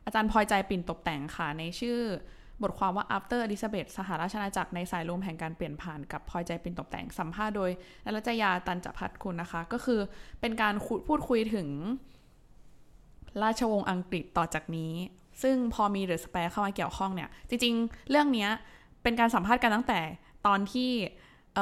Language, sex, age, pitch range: Thai, female, 20-39, 175-230 Hz